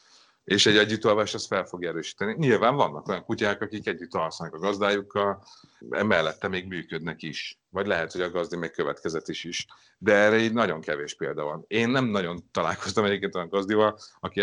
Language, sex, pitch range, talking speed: Hungarian, male, 90-115 Hz, 180 wpm